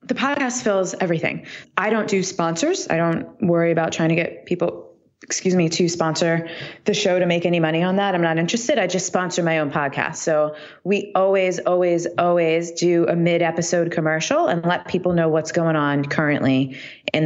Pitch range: 150-180 Hz